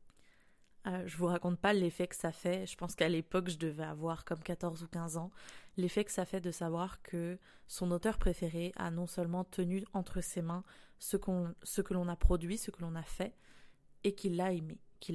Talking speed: 215 wpm